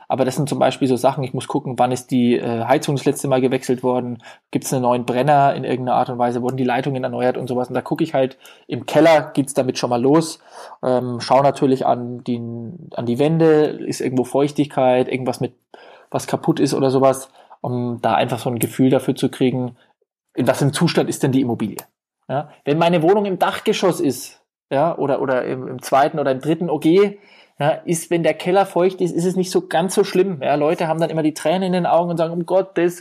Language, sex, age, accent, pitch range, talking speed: German, male, 20-39, German, 135-170 Hz, 235 wpm